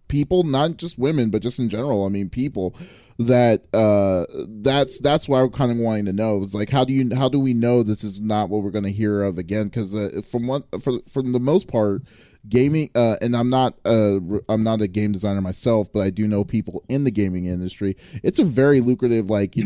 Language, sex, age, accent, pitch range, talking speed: English, male, 30-49, American, 100-125 Hz, 235 wpm